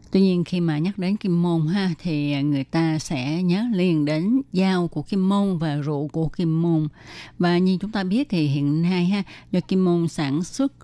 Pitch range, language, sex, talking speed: 155-190 Hz, Vietnamese, female, 215 wpm